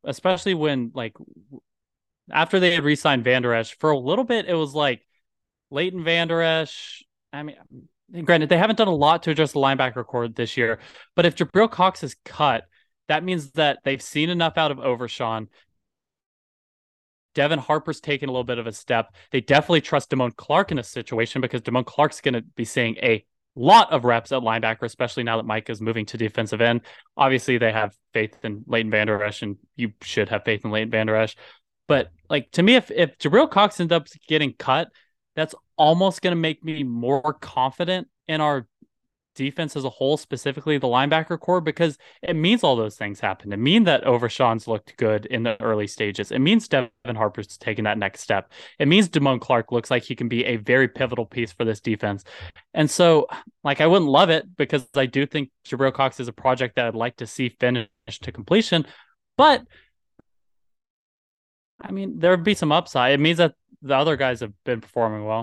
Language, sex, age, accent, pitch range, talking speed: English, male, 20-39, American, 115-155 Hz, 200 wpm